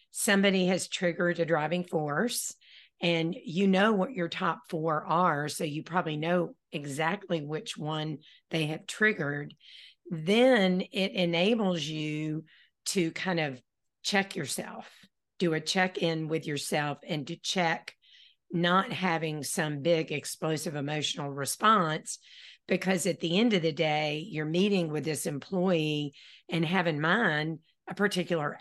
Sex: female